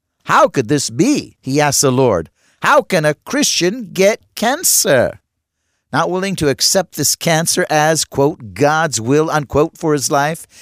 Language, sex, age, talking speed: English, male, 50-69, 160 wpm